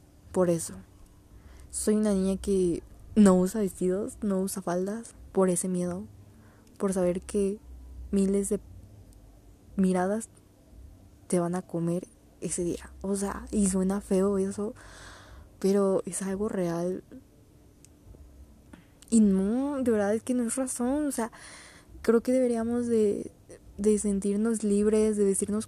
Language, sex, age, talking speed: Spanish, female, 20-39, 135 wpm